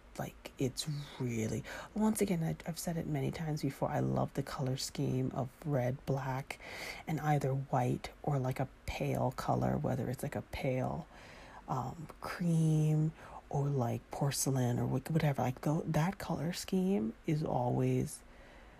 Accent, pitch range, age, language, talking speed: American, 130-165 Hz, 30-49, English, 145 wpm